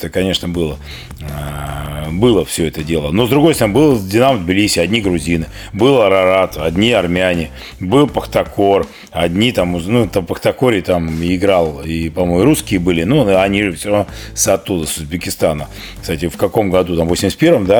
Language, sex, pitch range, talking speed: Russian, male, 80-105 Hz, 160 wpm